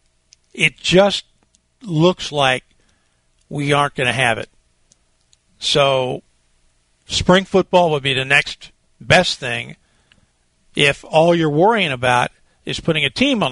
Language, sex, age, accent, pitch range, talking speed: English, male, 50-69, American, 125-180 Hz, 130 wpm